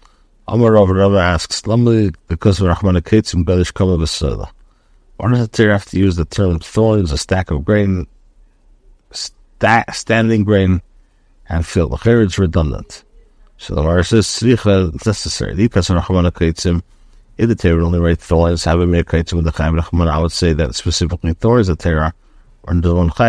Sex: male